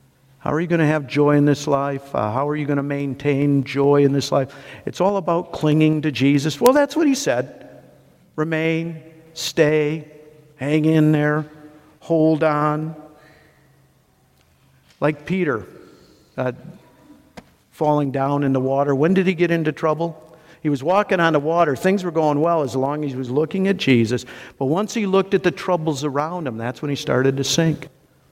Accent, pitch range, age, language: American, 140-175 Hz, 50-69, English